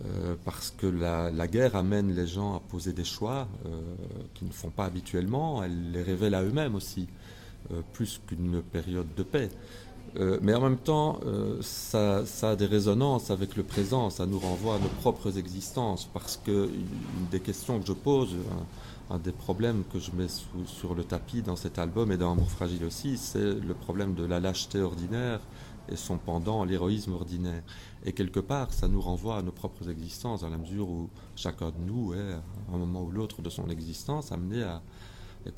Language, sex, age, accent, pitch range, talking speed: French, male, 30-49, French, 85-105 Hz, 205 wpm